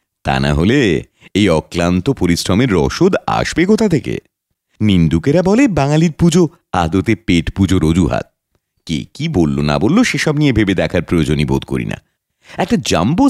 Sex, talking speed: male, 145 wpm